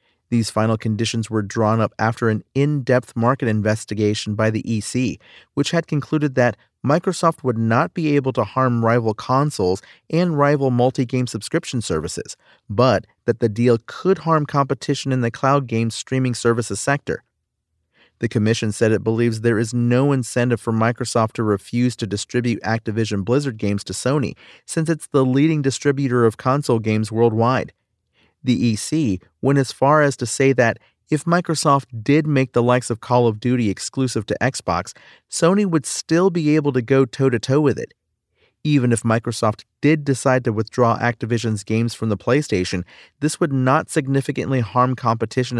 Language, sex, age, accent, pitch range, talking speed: English, male, 40-59, American, 110-135 Hz, 165 wpm